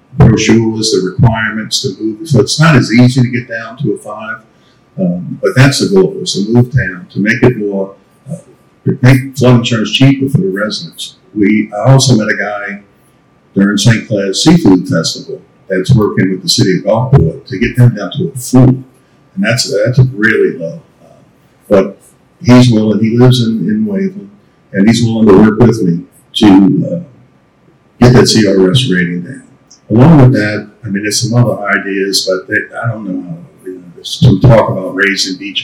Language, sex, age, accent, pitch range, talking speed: English, male, 50-69, American, 100-135 Hz, 190 wpm